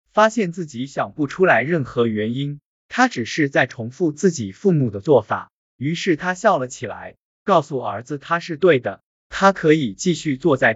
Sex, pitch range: male, 125-185 Hz